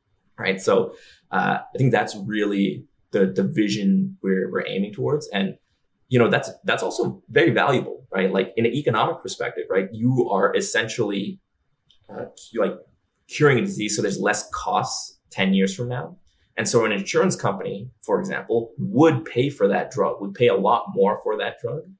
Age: 20-39